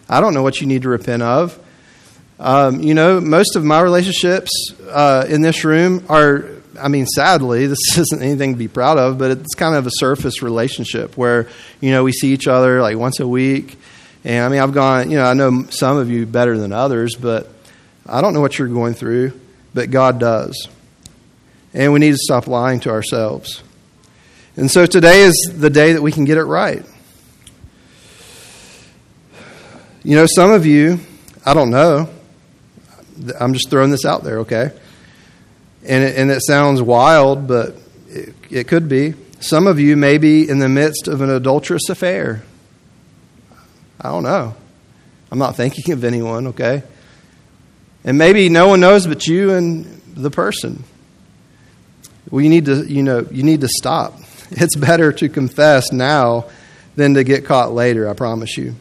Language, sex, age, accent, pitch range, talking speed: English, male, 40-59, American, 125-155 Hz, 175 wpm